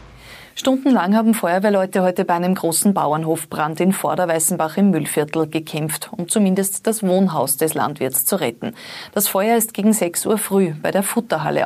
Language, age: German, 30-49